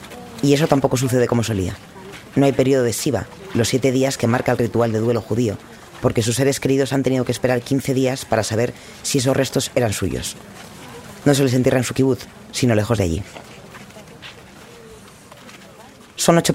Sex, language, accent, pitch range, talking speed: female, Spanish, Spanish, 110-140 Hz, 185 wpm